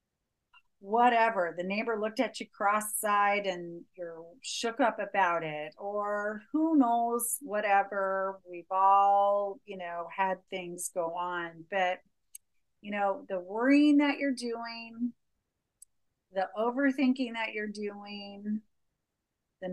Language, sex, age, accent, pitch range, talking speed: English, female, 40-59, American, 190-225 Hz, 120 wpm